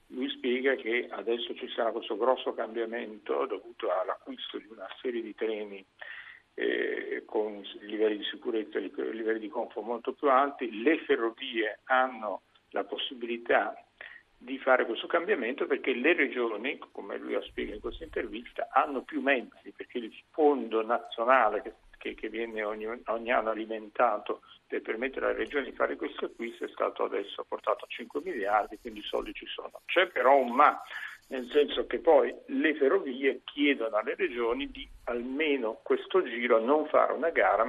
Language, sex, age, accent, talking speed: Italian, male, 50-69, native, 160 wpm